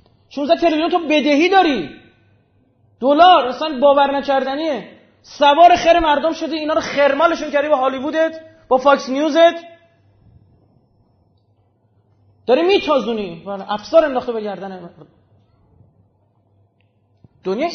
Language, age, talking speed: Persian, 30-49, 95 wpm